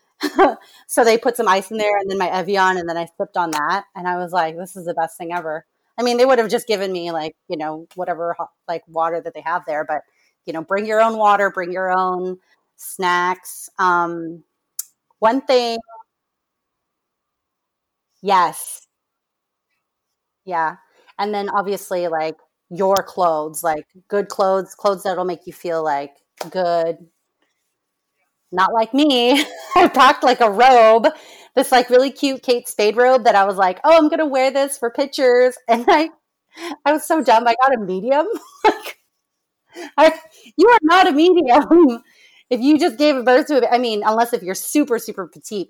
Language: English